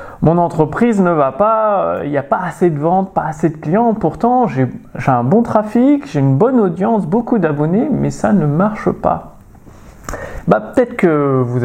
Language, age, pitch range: French, 30-49, 155-215 Hz